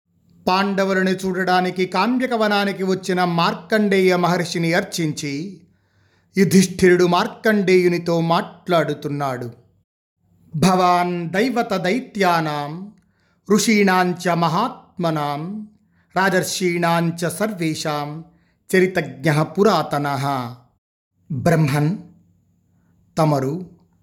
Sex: male